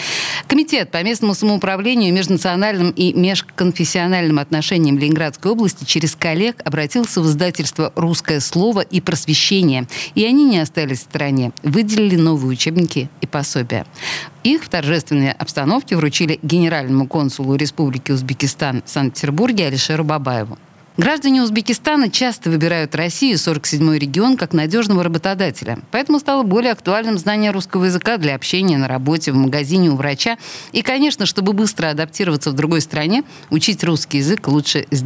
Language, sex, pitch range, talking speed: Russian, female, 145-205 Hz, 140 wpm